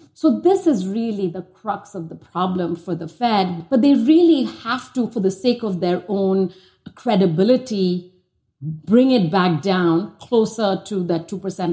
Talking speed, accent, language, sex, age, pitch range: 160 wpm, Indian, English, female, 50-69, 180-245 Hz